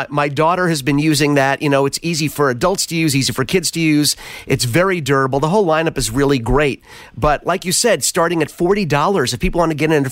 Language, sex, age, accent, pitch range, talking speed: English, male, 30-49, American, 145-180 Hz, 250 wpm